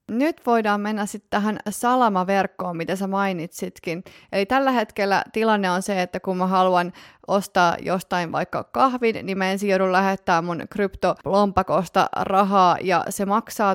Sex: female